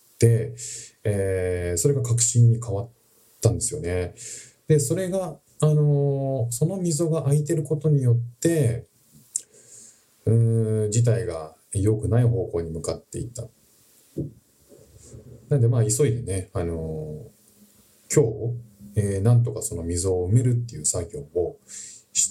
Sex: male